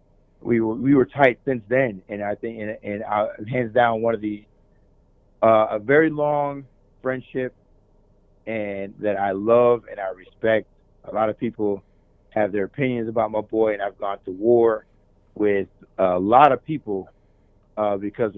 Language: English